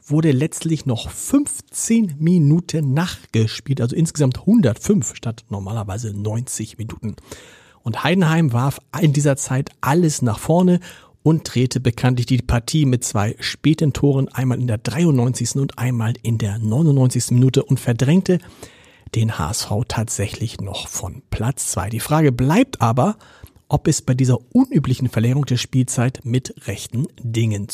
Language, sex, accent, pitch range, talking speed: German, male, German, 115-155 Hz, 140 wpm